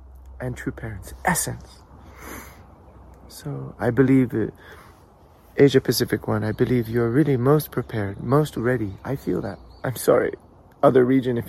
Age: 30-49